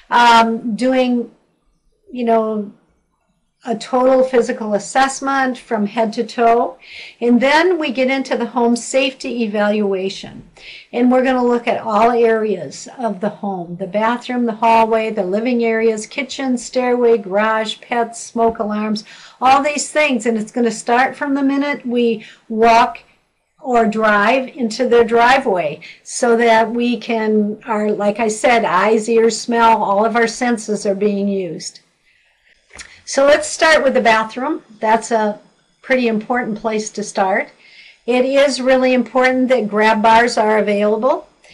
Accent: American